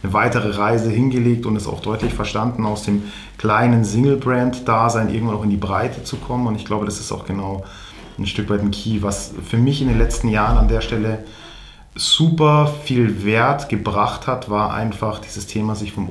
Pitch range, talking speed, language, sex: 100-120 Hz, 195 wpm, German, male